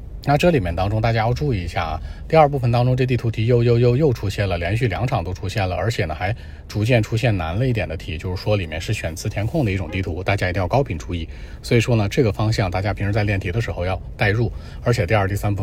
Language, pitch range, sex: Chinese, 100-125 Hz, male